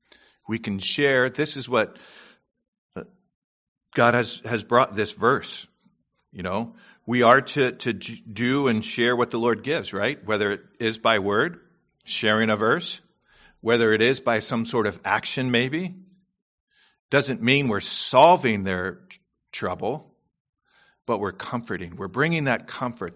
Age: 50-69